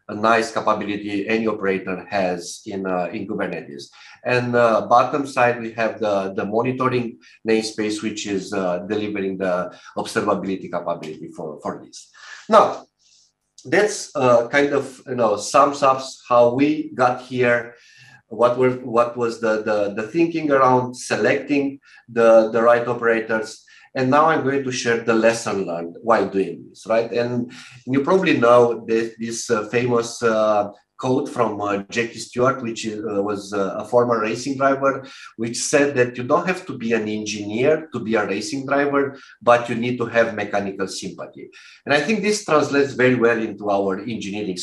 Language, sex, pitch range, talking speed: English, male, 105-130 Hz, 165 wpm